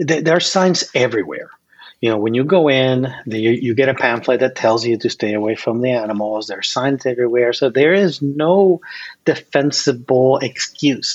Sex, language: male, English